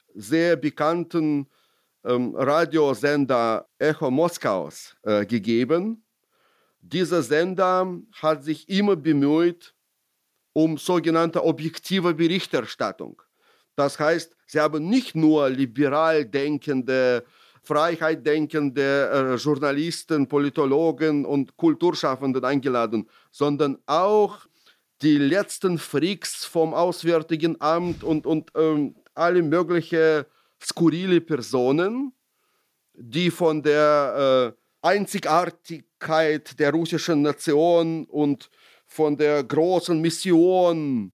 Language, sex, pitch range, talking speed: German, male, 145-170 Hz, 90 wpm